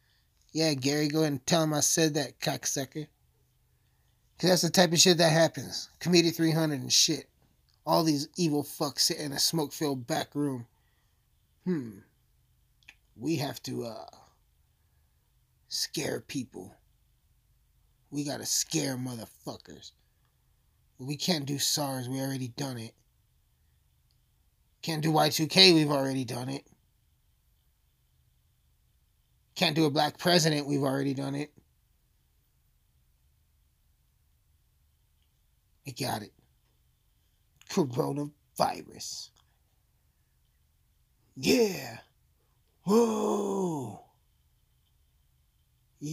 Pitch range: 115-160 Hz